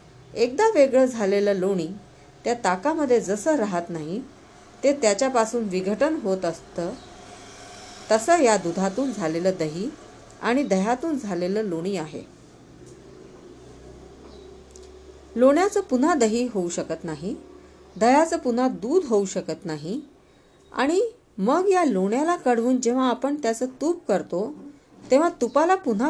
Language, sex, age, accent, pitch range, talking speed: Hindi, female, 40-59, native, 180-280 Hz, 85 wpm